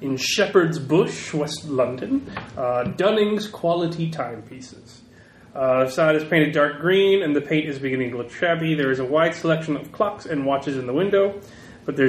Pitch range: 130-180 Hz